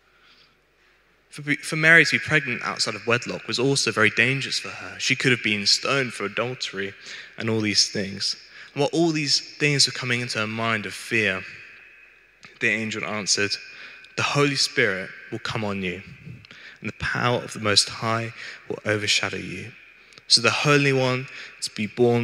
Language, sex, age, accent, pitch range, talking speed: English, male, 20-39, British, 105-125 Hz, 175 wpm